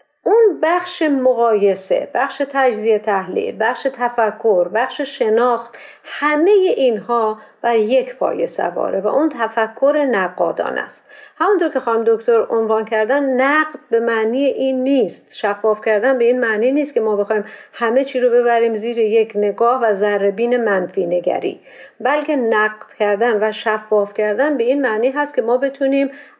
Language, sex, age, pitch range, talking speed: Persian, female, 50-69, 220-290 Hz, 150 wpm